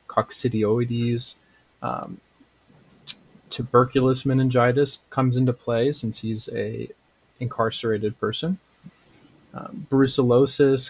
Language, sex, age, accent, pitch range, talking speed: English, male, 30-49, American, 115-135 Hz, 75 wpm